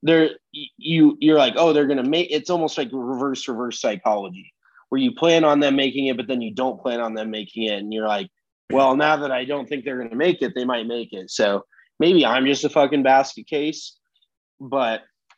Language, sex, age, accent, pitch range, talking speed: English, male, 20-39, American, 125-155 Hz, 220 wpm